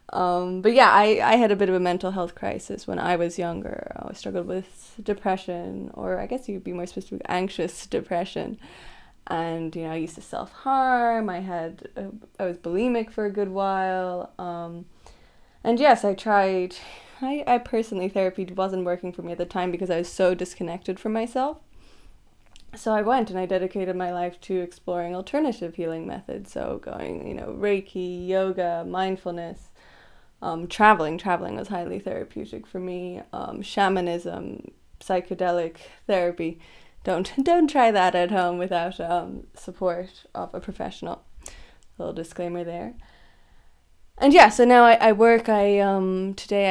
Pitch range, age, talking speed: 175-205 Hz, 20-39, 165 wpm